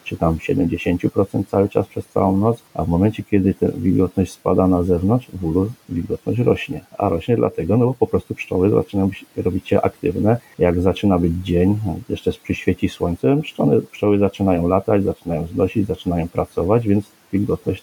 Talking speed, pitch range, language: 160 wpm, 90-105 Hz, Polish